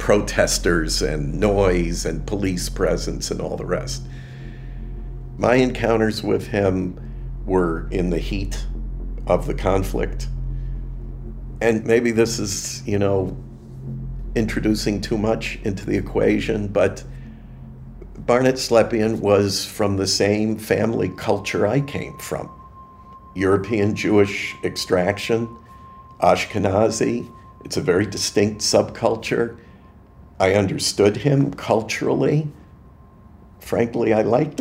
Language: English